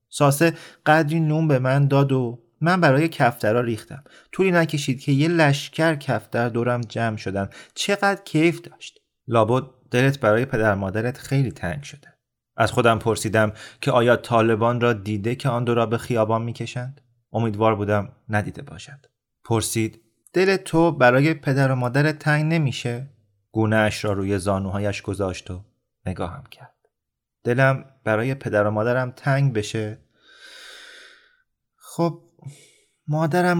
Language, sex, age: Persian, male, 30-49